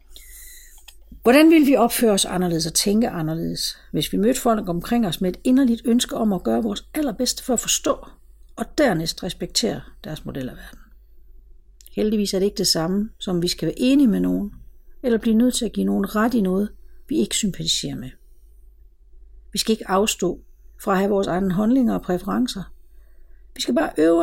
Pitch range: 180-275 Hz